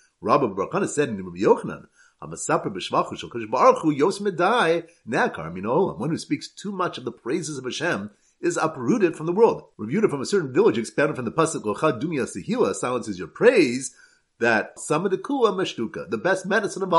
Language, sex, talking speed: English, male, 200 wpm